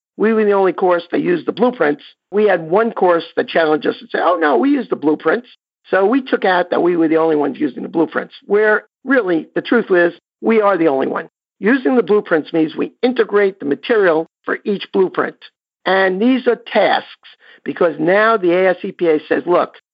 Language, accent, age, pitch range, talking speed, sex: English, American, 50-69, 170-230 Hz, 205 wpm, male